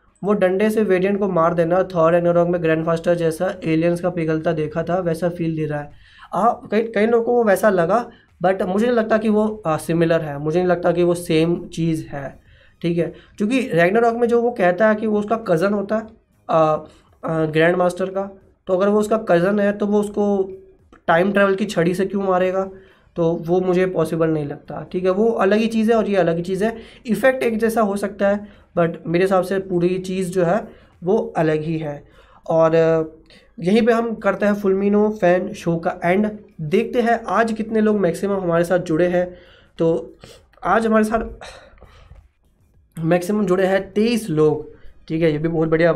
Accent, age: native, 20-39